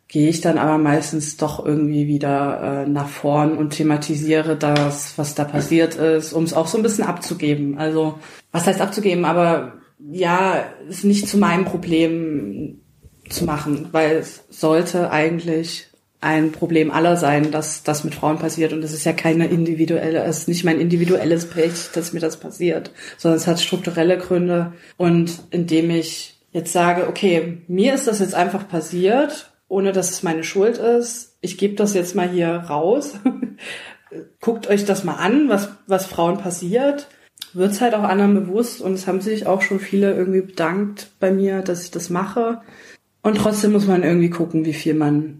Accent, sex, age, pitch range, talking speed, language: German, female, 20-39, 160-205 Hz, 180 wpm, German